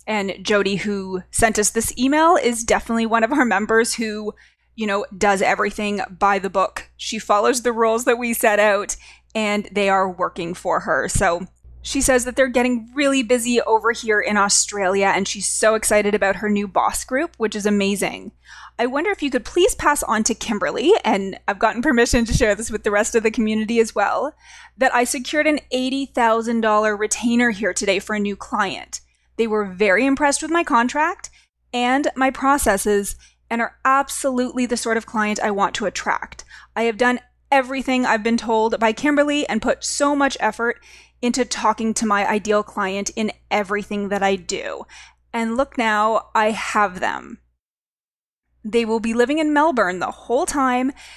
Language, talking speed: English, 185 wpm